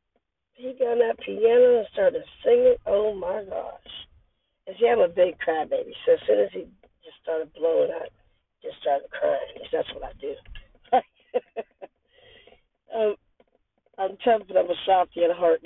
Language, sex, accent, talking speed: English, female, American, 170 wpm